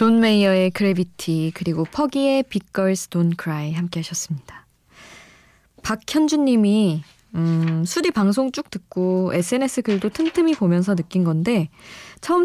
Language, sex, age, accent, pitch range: Korean, female, 20-39, native, 165-245 Hz